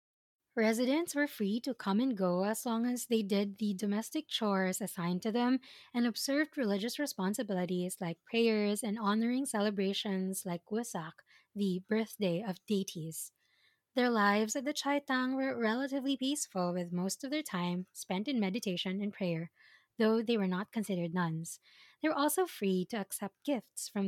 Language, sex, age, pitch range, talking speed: English, female, 20-39, 185-245 Hz, 160 wpm